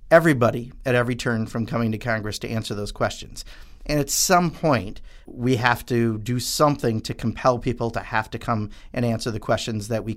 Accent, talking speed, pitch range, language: American, 200 wpm, 110-130 Hz, English